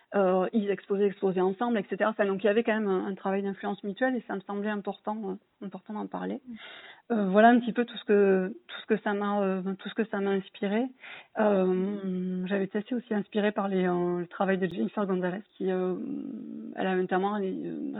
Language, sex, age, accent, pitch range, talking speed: French, female, 30-49, French, 190-215 Hz, 225 wpm